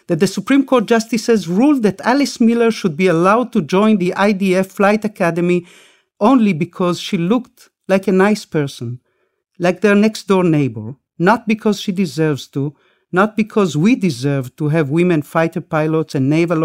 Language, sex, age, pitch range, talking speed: English, male, 50-69, 160-210 Hz, 165 wpm